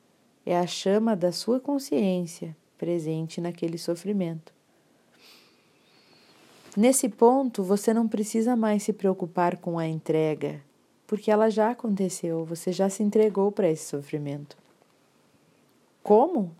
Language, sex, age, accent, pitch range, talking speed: Portuguese, female, 40-59, Brazilian, 175-220 Hz, 115 wpm